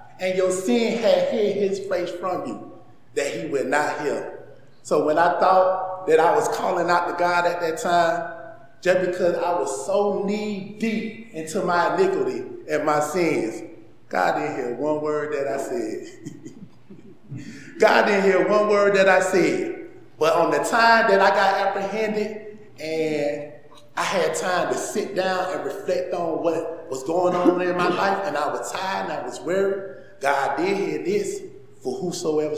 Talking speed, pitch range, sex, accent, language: 175 wpm, 170-220 Hz, male, American, English